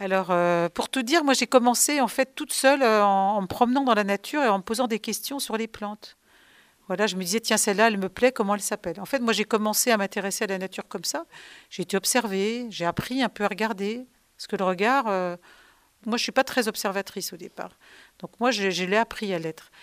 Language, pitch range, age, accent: French, 190-235 Hz, 50-69, French